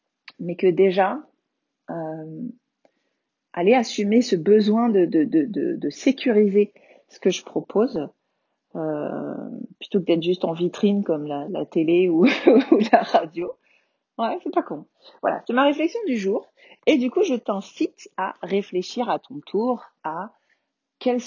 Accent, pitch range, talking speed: French, 180-250 Hz, 150 wpm